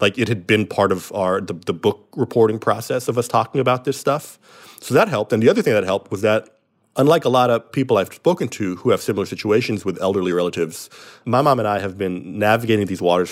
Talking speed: 240 wpm